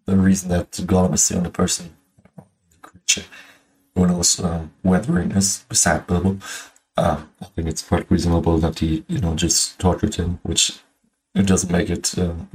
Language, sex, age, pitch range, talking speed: German, male, 20-39, 85-95 Hz, 165 wpm